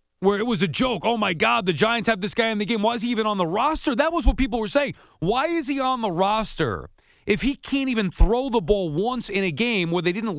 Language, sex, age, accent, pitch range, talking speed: English, male, 40-59, American, 175-220 Hz, 285 wpm